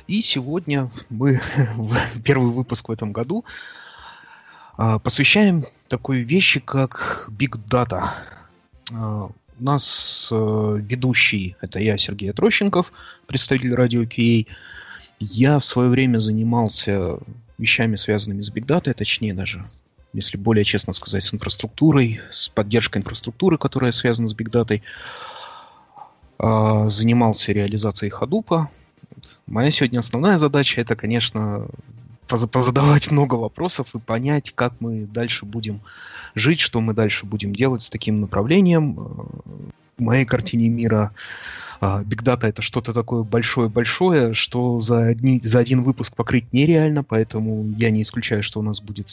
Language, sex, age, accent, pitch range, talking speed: Russian, male, 30-49, native, 110-130 Hz, 125 wpm